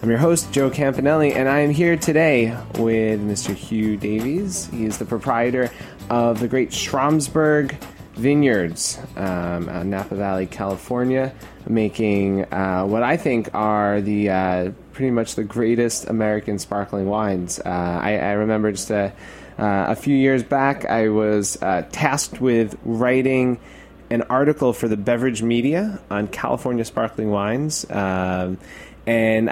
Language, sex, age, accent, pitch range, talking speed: English, male, 20-39, American, 100-130 Hz, 145 wpm